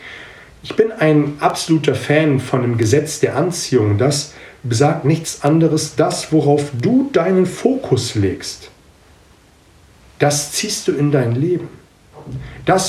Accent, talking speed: German, 125 wpm